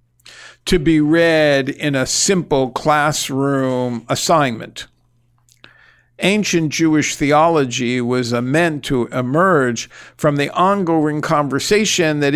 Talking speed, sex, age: 95 wpm, male, 50-69